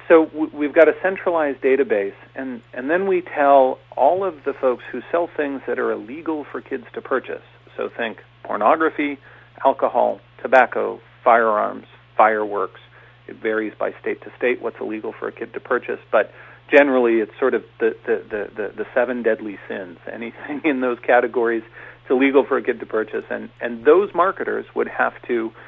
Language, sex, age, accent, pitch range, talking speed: English, male, 40-59, American, 120-185 Hz, 175 wpm